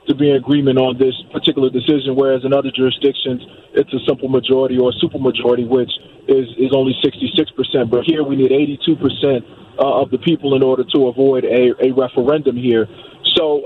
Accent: American